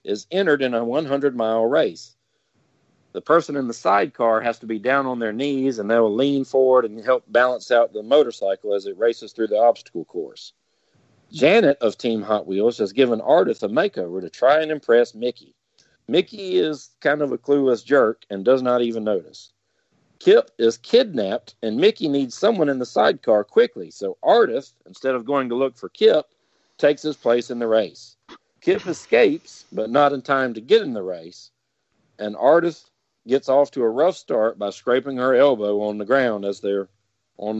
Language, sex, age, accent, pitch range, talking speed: English, male, 50-69, American, 115-145 Hz, 190 wpm